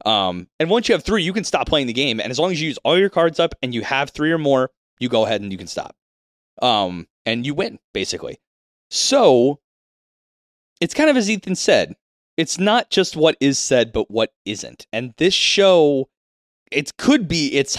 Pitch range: 110-155 Hz